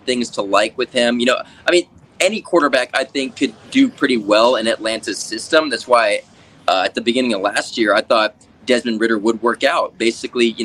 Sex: male